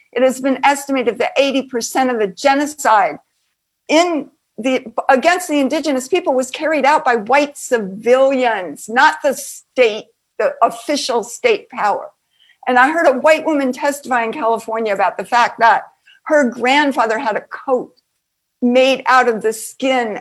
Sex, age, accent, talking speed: female, 60-79, American, 150 wpm